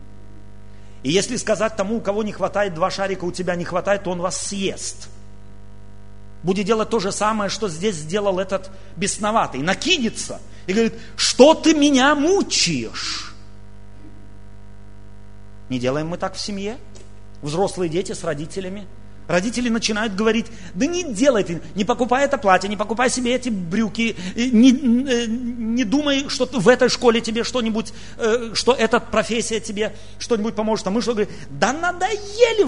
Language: Russian